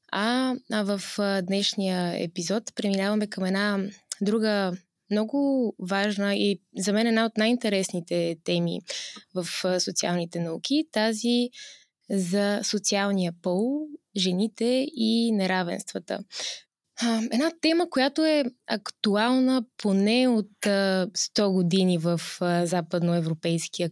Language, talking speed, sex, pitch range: Bulgarian, 95 wpm, female, 185-230 Hz